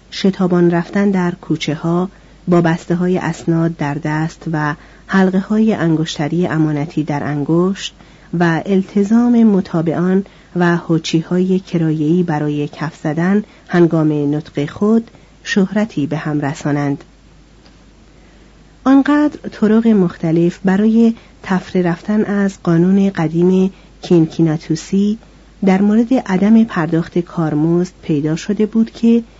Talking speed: 105 wpm